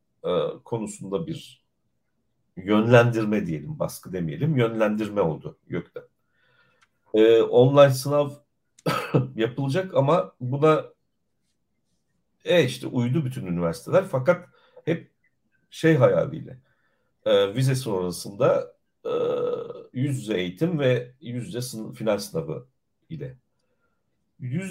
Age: 60-79